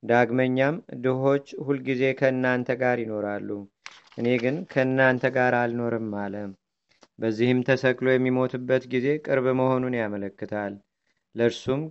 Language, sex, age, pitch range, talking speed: Amharic, male, 30-49, 120-130 Hz, 105 wpm